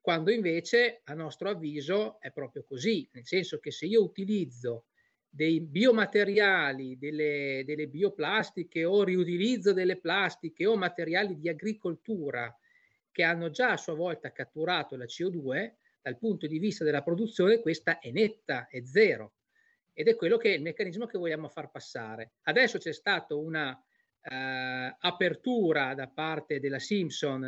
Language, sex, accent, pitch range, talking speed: Italian, male, native, 150-210 Hz, 150 wpm